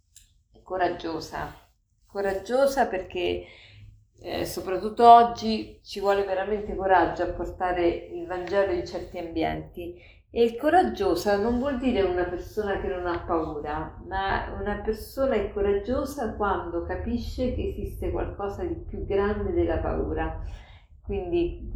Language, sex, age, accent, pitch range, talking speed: Italian, female, 50-69, native, 165-225 Hz, 120 wpm